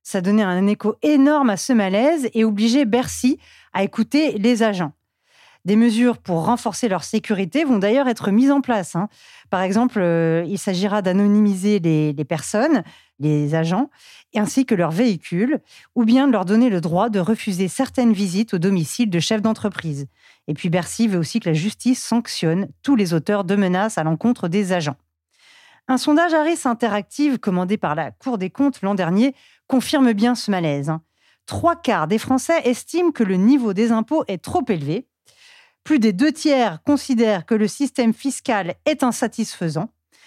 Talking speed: 175 wpm